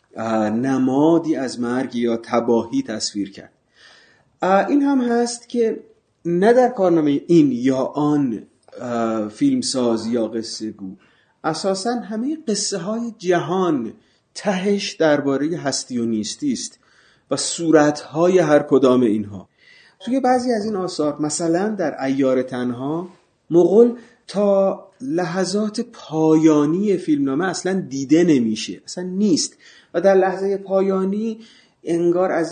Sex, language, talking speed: male, Persian, 115 wpm